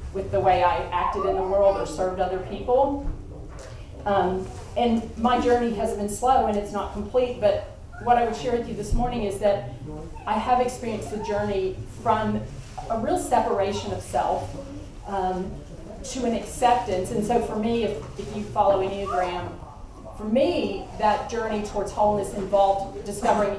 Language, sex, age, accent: English, female, 40-59, American